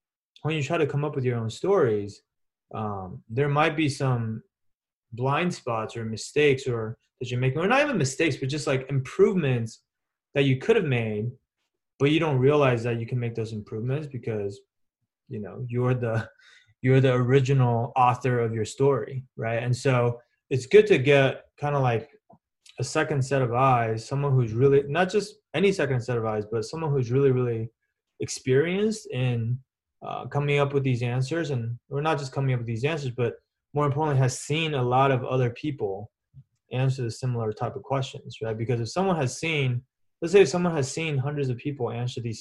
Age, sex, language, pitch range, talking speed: 20-39, male, English, 115-145 Hz, 195 wpm